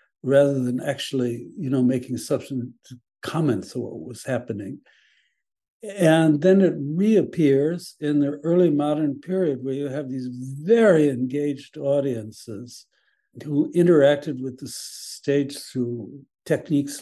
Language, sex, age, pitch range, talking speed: English, male, 60-79, 125-150 Hz, 125 wpm